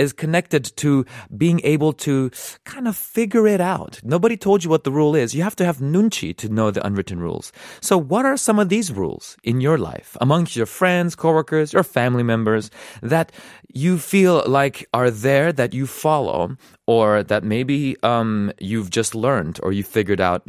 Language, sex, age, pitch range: Korean, male, 30-49, 110-180 Hz